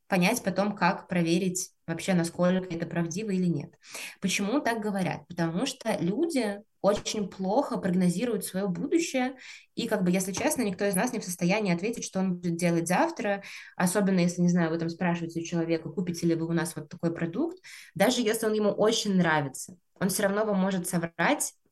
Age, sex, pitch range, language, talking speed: 20-39, female, 165-215 Hz, Russian, 185 wpm